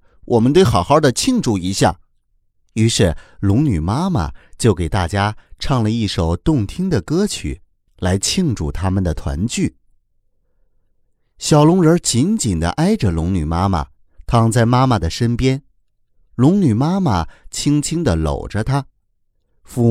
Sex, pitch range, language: male, 90-135 Hz, Chinese